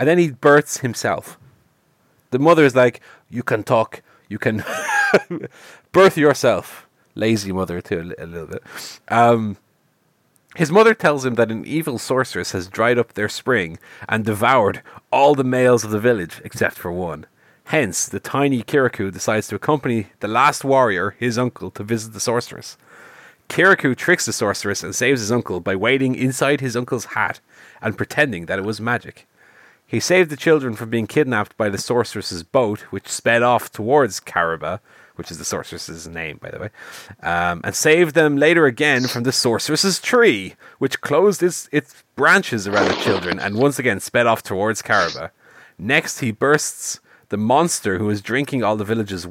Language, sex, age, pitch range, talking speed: English, male, 30-49, 105-140 Hz, 175 wpm